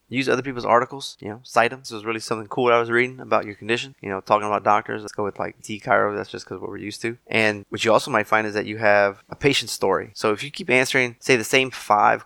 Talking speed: 290 wpm